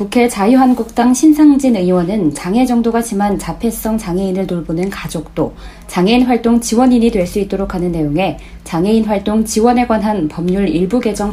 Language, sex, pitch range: Korean, female, 175-235 Hz